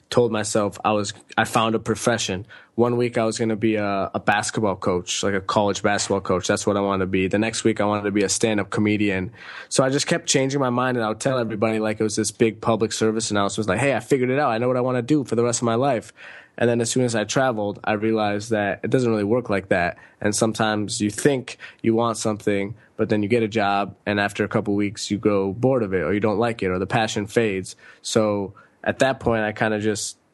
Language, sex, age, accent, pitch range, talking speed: English, male, 20-39, American, 100-115 Hz, 270 wpm